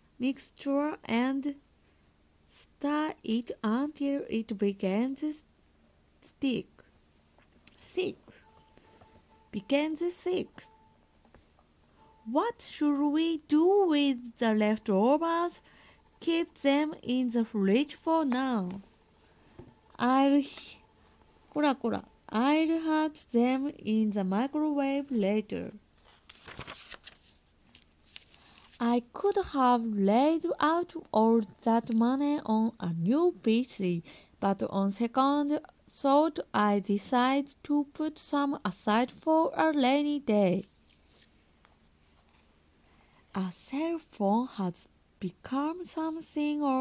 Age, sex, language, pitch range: 20-39, female, Japanese, 195-295 Hz